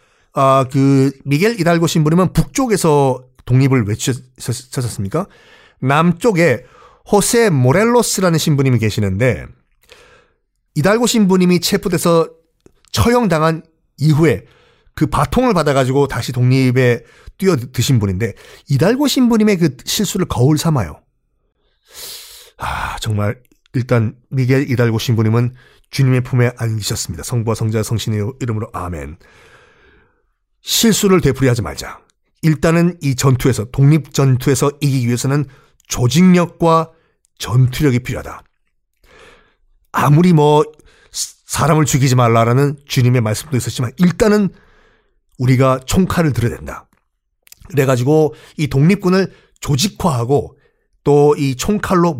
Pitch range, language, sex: 125-175 Hz, Korean, male